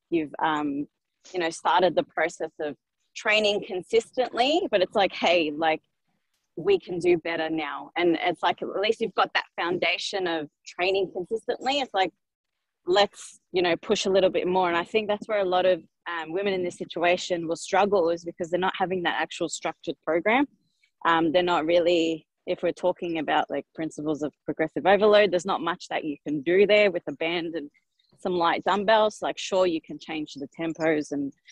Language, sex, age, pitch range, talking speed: English, female, 20-39, 160-195 Hz, 195 wpm